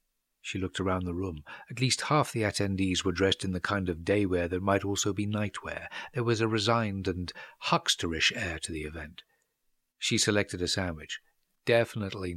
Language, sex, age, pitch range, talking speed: English, male, 60-79, 95-125 Hz, 185 wpm